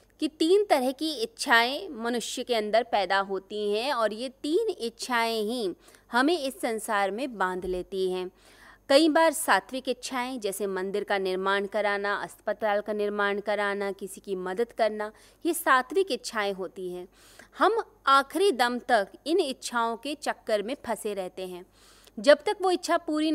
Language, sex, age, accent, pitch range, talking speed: Hindi, female, 20-39, native, 205-285 Hz, 160 wpm